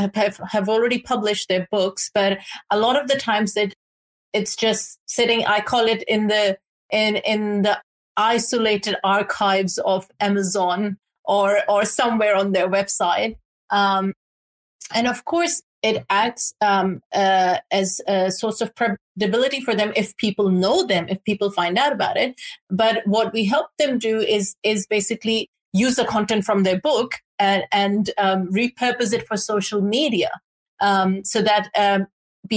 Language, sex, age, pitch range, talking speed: English, female, 30-49, 195-225 Hz, 155 wpm